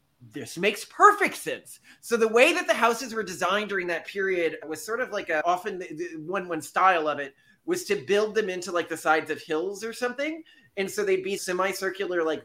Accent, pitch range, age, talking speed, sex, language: American, 175-250 Hz, 30-49, 220 wpm, male, English